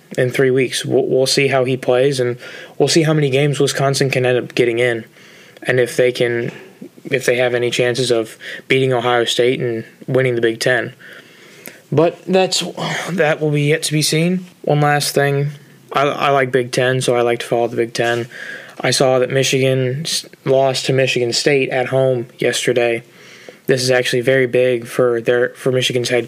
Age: 20-39